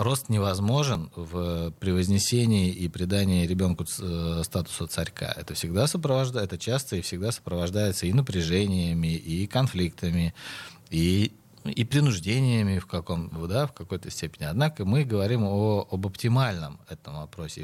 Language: Russian